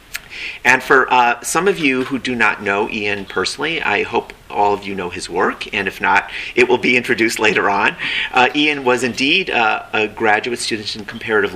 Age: 40-59